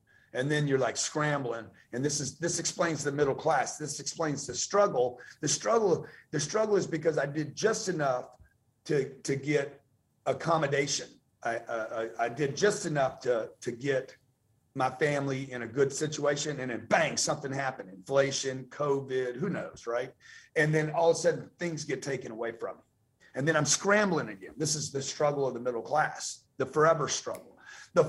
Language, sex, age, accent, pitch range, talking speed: English, male, 40-59, American, 125-165 Hz, 180 wpm